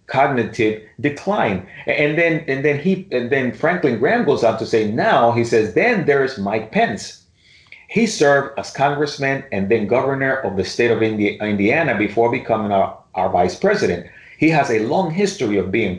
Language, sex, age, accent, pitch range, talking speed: English, male, 40-59, American, 115-160 Hz, 175 wpm